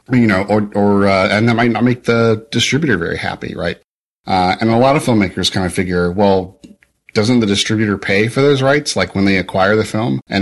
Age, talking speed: 40-59, 225 wpm